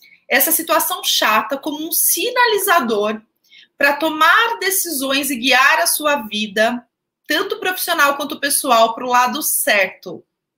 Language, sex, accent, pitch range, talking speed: Portuguese, female, Brazilian, 225-320 Hz, 125 wpm